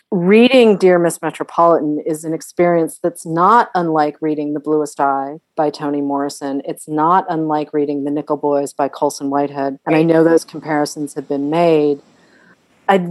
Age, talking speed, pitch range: 40-59, 165 wpm, 145-175 Hz